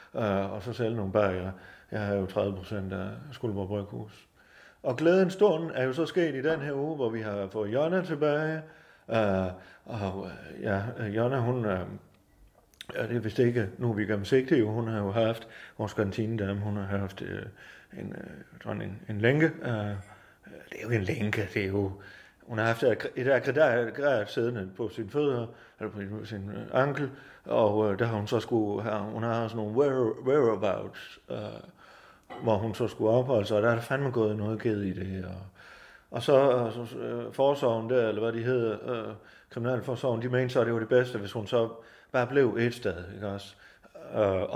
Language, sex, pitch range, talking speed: Danish, male, 105-125 Hz, 195 wpm